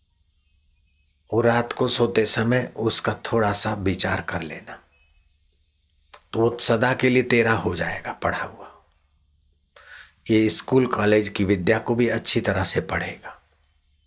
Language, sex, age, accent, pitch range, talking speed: Hindi, male, 50-69, native, 85-115 Hz, 135 wpm